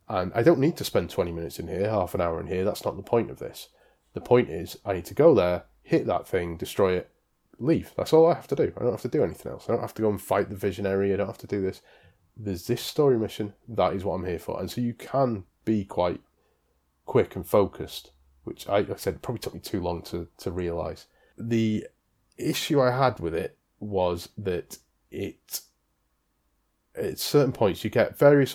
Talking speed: 230 wpm